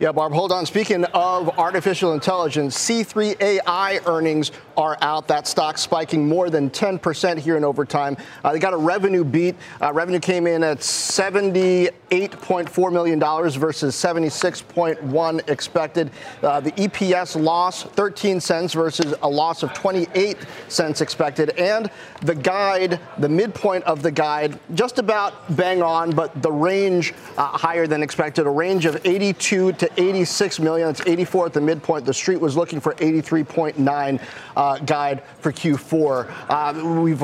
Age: 40-59